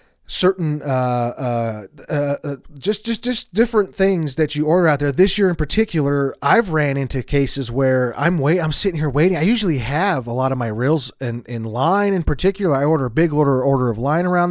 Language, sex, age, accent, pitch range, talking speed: English, male, 30-49, American, 130-175 Hz, 210 wpm